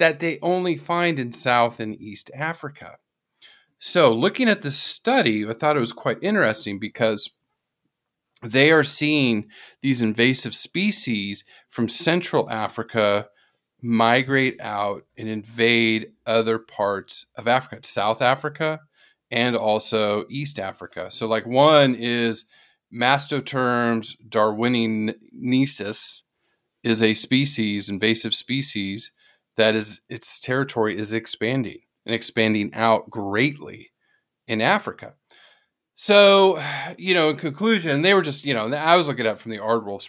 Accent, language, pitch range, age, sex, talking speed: American, English, 110-135 Hz, 40-59, male, 125 wpm